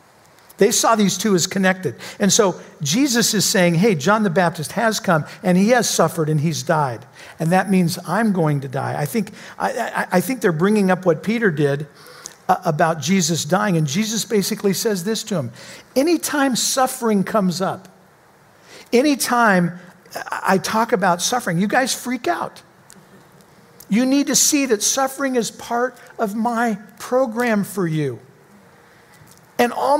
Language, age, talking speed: English, 50-69, 165 wpm